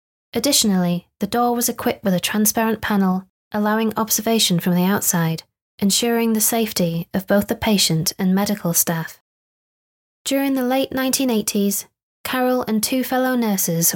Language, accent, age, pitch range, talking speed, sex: English, British, 20-39, 185-235 Hz, 140 wpm, female